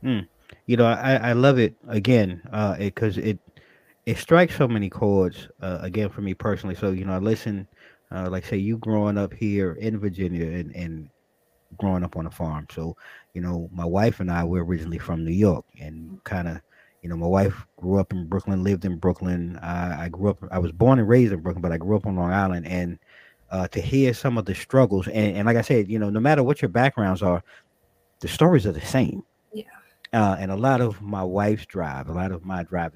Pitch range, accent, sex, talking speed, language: 90-110 Hz, American, male, 230 wpm, English